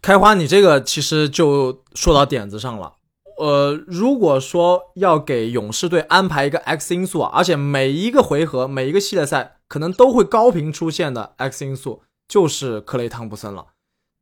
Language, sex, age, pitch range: Chinese, male, 20-39, 135-185 Hz